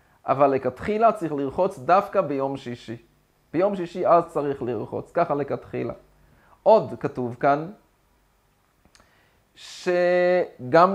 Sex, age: male, 30-49